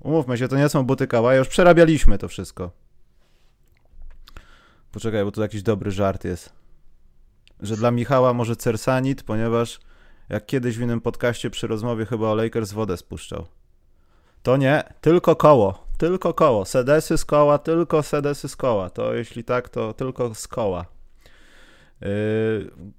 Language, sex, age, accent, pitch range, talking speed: Polish, male, 30-49, native, 95-130 Hz, 150 wpm